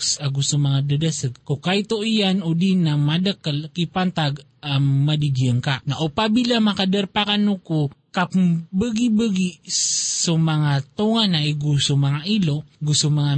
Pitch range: 150-200 Hz